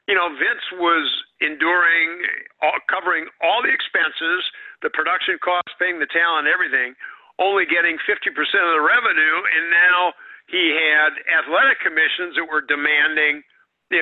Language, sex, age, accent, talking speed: English, male, 50-69, American, 135 wpm